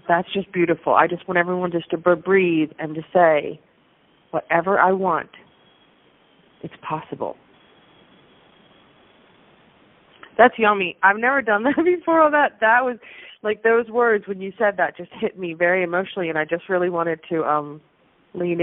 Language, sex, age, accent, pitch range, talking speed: English, female, 30-49, American, 185-255 Hz, 160 wpm